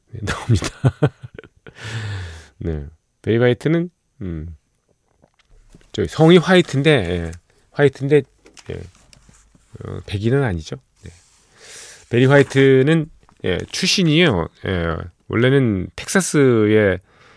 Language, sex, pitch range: Korean, male, 95-135 Hz